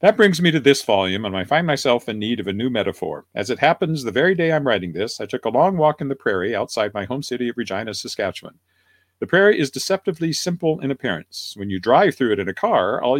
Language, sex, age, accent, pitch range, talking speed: English, male, 50-69, American, 100-160 Hz, 255 wpm